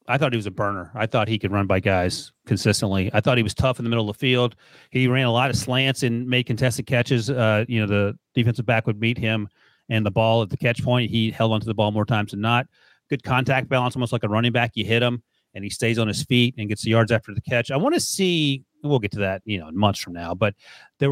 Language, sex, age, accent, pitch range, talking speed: English, male, 30-49, American, 105-125 Hz, 285 wpm